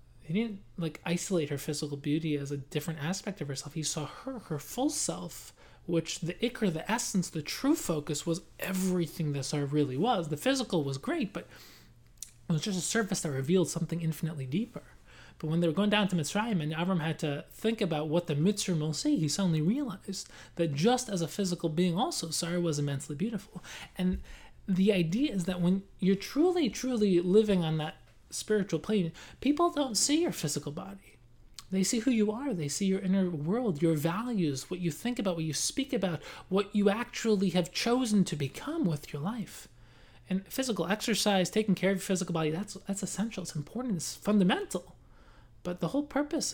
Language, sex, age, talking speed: English, male, 20-39, 195 wpm